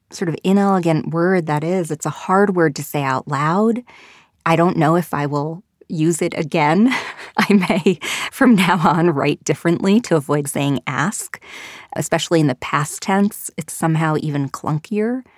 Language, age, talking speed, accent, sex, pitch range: English, 30-49, 170 wpm, American, female, 150-195 Hz